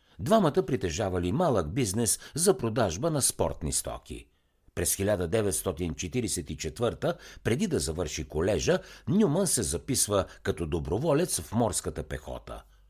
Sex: male